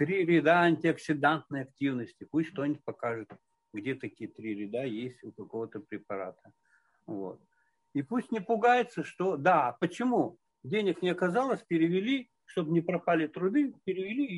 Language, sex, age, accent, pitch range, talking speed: Russian, male, 60-79, native, 145-215 Hz, 140 wpm